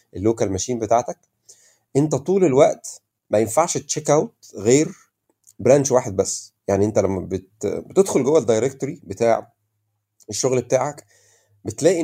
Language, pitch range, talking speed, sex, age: Arabic, 110-155 Hz, 125 wpm, male, 30-49